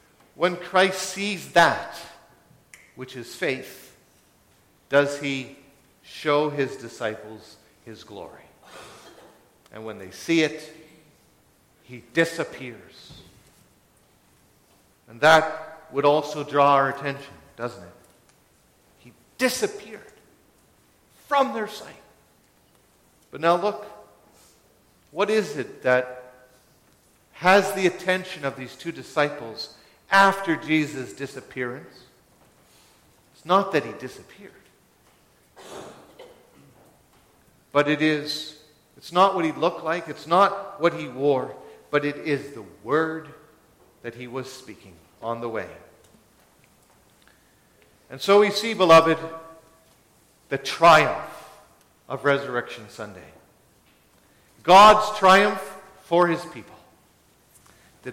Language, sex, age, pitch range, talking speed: English, male, 50-69, 130-180 Hz, 100 wpm